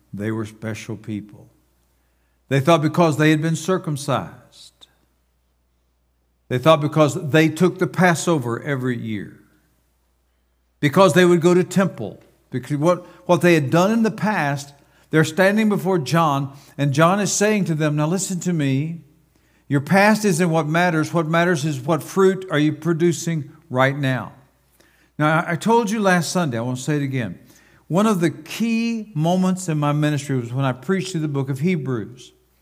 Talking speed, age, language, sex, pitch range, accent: 170 wpm, 60-79, English, male, 125-175 Hz, American